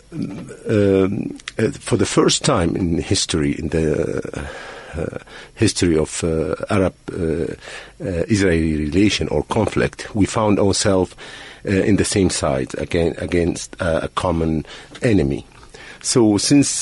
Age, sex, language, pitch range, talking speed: 50-69, male, English, 80-95 Hz, 130 wpm